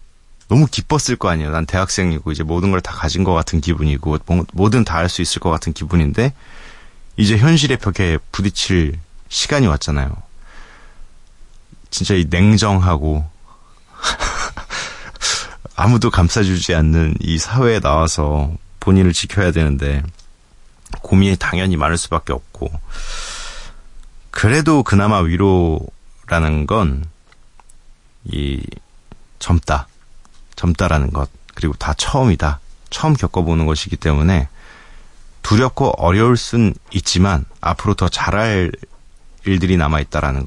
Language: Korean